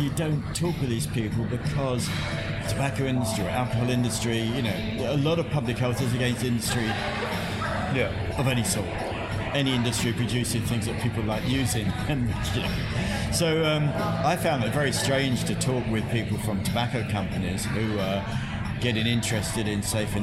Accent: British